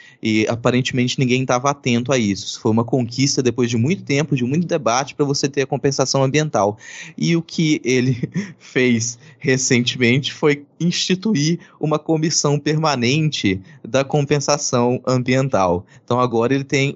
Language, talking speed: Portuguese, 145 wpm